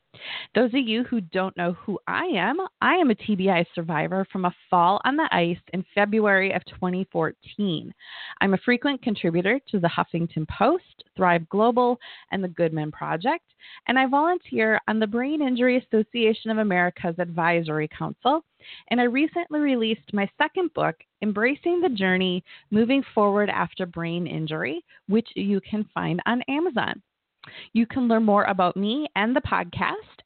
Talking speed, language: 160 wpm, English